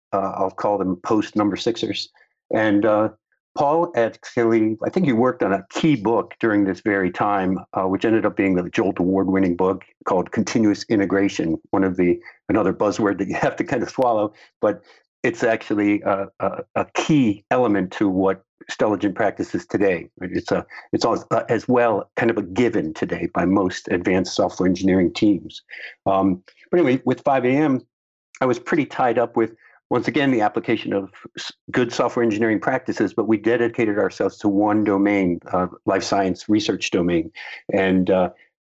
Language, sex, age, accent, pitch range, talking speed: English, male, 50-69, American, 95-115 Hz, 175 wpm